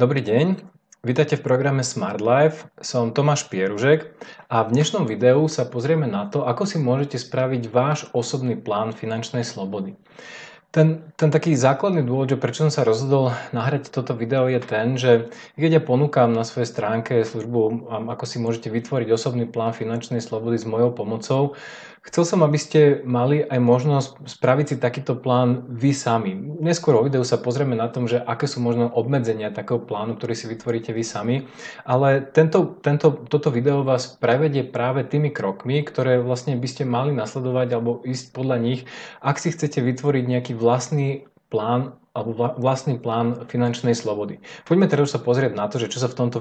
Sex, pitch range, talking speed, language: male, 115-145 Hz, 170 wpm, Slovak